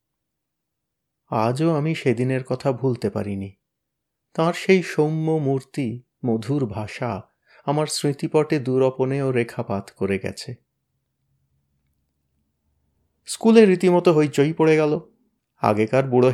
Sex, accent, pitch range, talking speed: male, native, 120-165 Hz, 90 wpm